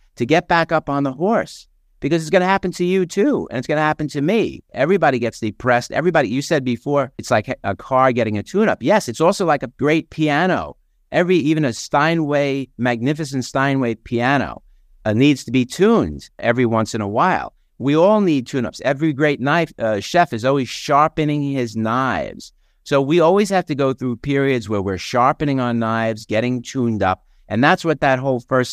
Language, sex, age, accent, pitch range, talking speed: English, male, 50-69, American, 115-150 Hz, 200 wpm